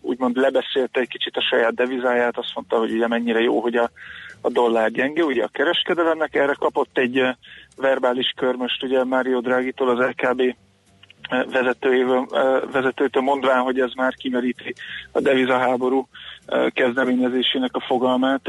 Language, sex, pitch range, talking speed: Hungarian, male, 125-135 Hz, 135 wpm